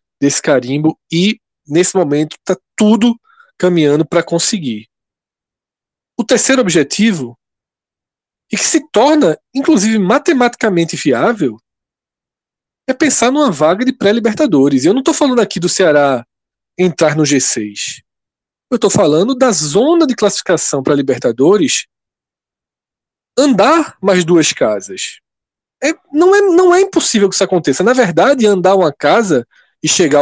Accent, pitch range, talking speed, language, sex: Brazilian, 160-255 Hz, 125 wpm, Portuguese, male